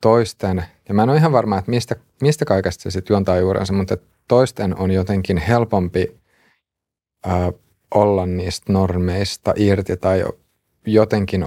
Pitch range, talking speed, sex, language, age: 90-105 Hz, 140 wpm, male, Finnish, 30-49